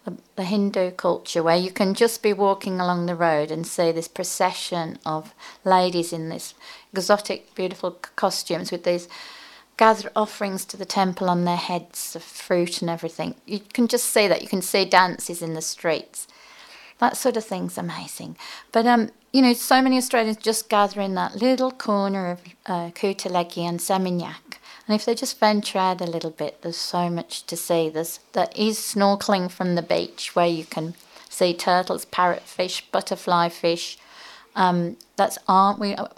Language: English